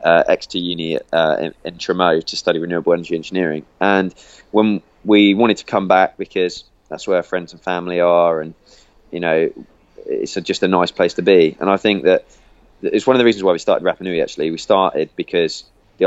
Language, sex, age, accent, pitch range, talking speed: English, male, 20-39, British, 85-110 Hz, 210 wpm